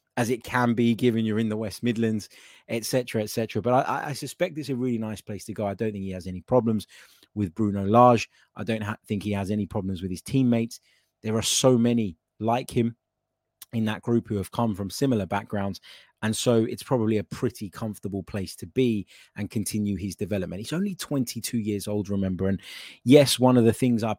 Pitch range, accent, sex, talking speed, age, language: 100-120 Hz, British, male, 220 wpm, 20-39, English